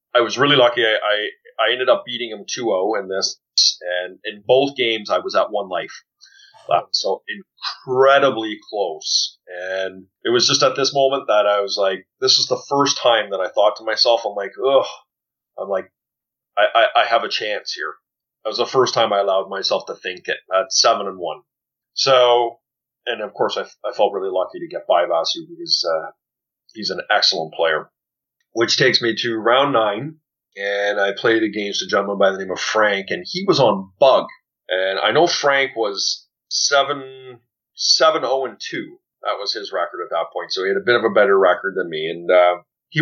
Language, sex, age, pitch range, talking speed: English, male, 30-49, 100-160 Hz, 205 wpm